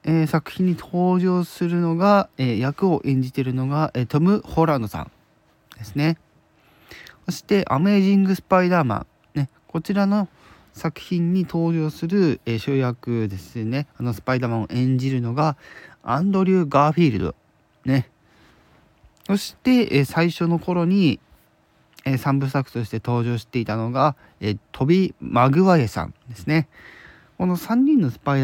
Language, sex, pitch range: Japanese, male, 120-170 Hz